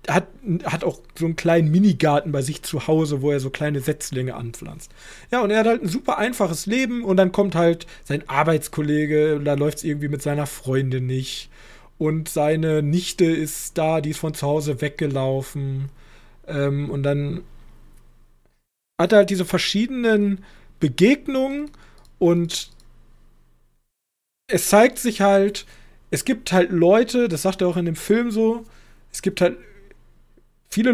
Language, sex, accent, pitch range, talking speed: German, male, German, 150-195 Hz, 155 wpm